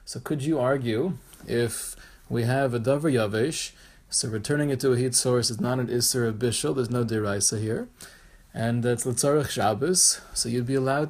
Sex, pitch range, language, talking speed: male, 115-140 Hz, English, 185 wpm